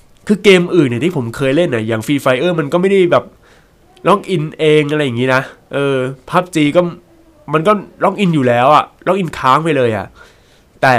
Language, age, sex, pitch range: Thai, 20-39, male, 115-170 Hz